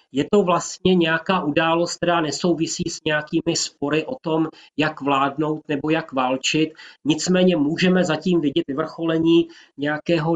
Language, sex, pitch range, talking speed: Slovak, male, 150-165 Hz, 135 wpm